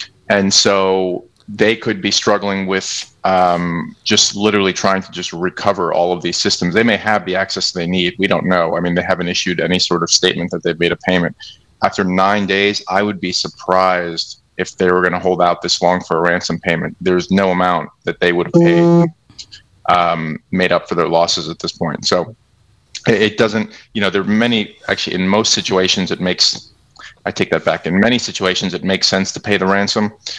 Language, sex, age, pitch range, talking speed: English, male, 30-49, 85-100 Hz, 210 wpm